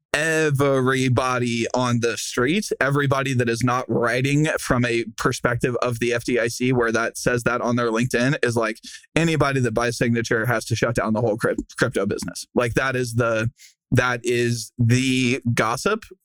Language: English